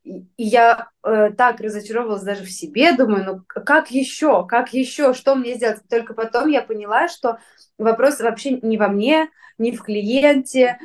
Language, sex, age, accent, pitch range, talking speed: Russian, female, 20-39, native, 200-265 Hz, 160 wpm